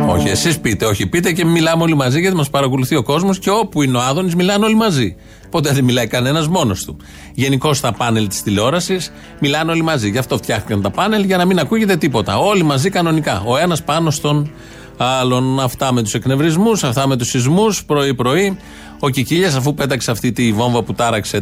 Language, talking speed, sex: Greek, 200 wpm, male